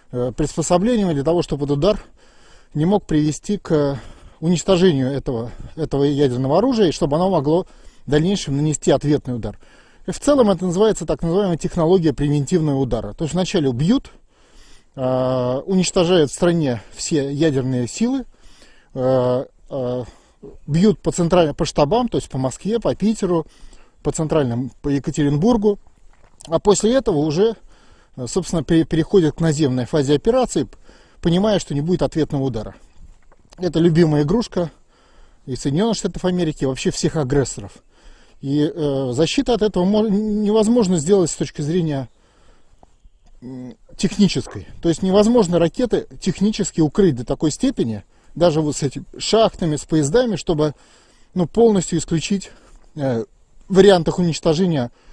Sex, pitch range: male, 140-190 Hz